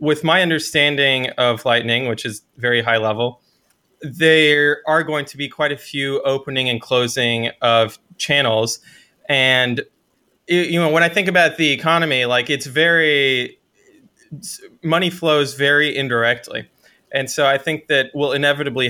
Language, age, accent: English, 20-39, American